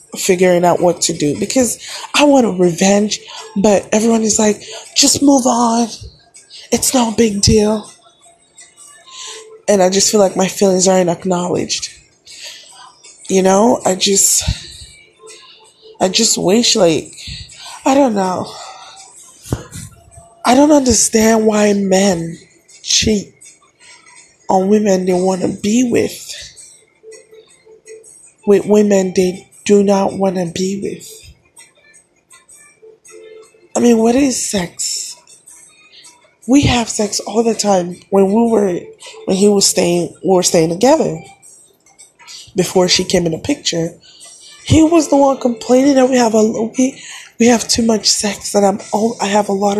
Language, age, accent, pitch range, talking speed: English, 20-39, American, 190-260 Hz, 135 wpm